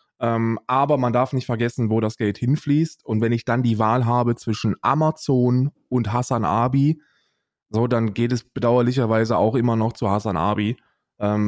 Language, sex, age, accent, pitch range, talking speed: German, male, 20-39, German, 110-135 Hz, 180 wpm